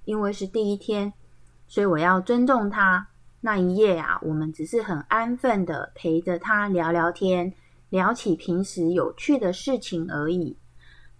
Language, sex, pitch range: Chinese, female, 165-235 Hz